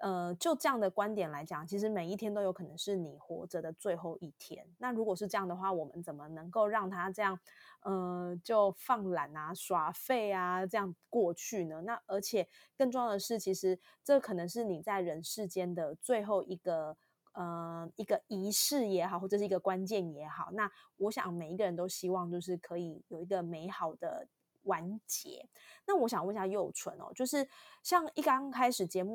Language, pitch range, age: Chinese, 175-220 Hz, 20-39